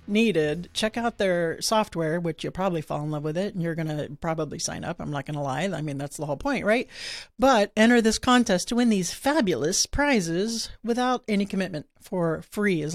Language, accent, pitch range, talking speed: English, American, 160-200 Hz, 210 wpm